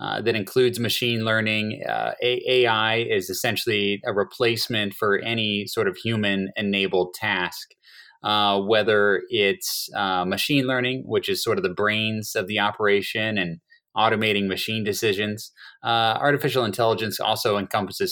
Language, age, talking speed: English, 30-49, 135 wpm